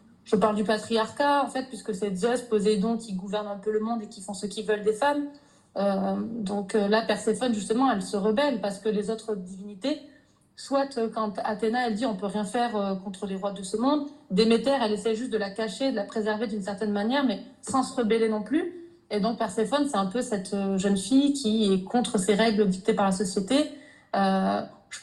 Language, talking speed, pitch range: French, 225 wpm, 200-245 Hz